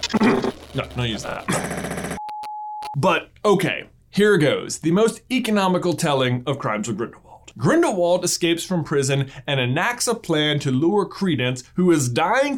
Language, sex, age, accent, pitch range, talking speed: English, male, 20-39, American, 135-200 Hz, 145 wpm